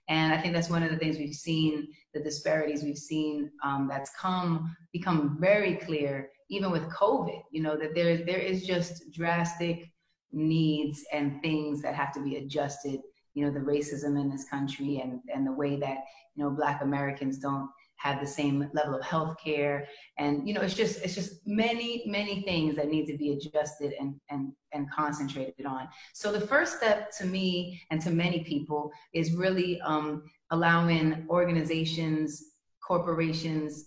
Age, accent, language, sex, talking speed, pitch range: 30-49, American, English, female, 175 wpm, 145-170 Hz